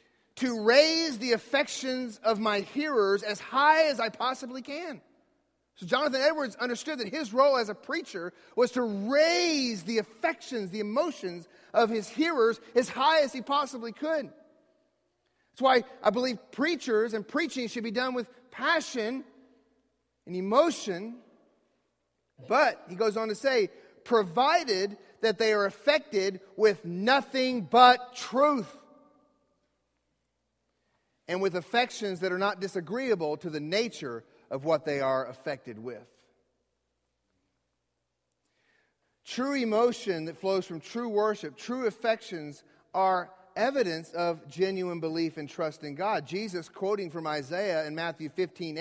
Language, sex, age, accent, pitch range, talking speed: English, male, 40-59, American, 180-260 Hz, 135 wpm